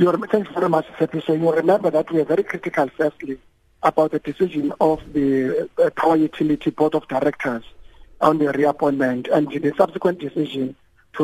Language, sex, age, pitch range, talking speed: English, male, 50-69, 145-170 Hz, 170 wpm